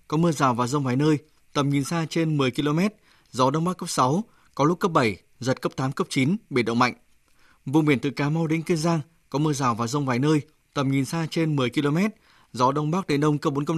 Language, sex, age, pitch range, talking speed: Vietnamese, male, 20-39, 135-170 Hz, 255 wpm